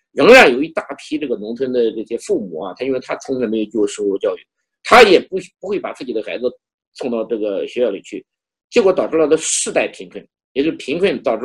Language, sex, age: Chinese, male, 50-69